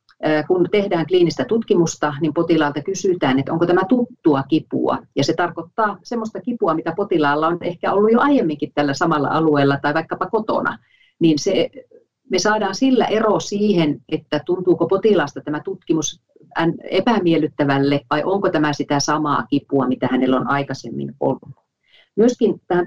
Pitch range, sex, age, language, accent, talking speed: 145-190 Hz, female, 40-59, Finnish, native, 145 wpm